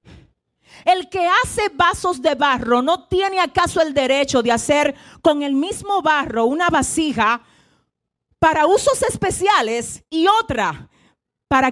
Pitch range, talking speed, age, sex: 250-345 Hz, 130 wpm, 40-59, female